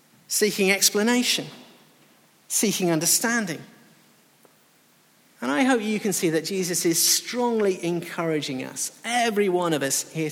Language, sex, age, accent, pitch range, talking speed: English, male, 50-69, British, 155-220 Hz, 120 wpm